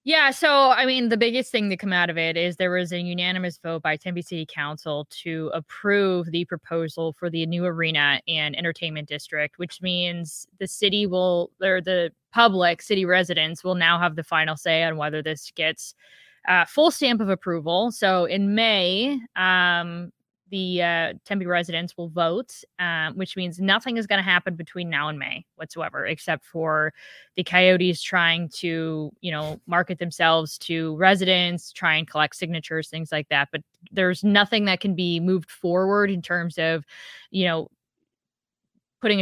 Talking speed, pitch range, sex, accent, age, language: 175 wpm, 165-195 Hz, female, American, 20-39, English